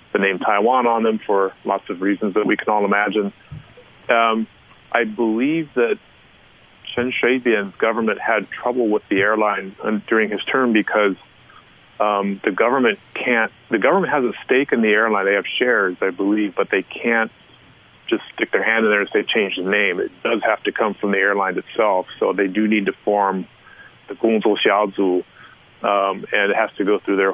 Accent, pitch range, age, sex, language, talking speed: American, 100-115 Hz, 30-49, male, English, 190 wpm